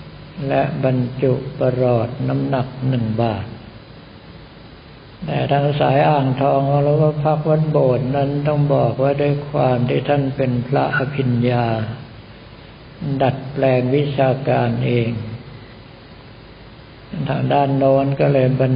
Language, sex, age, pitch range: Thai, male, 60-79, 125-140 Hz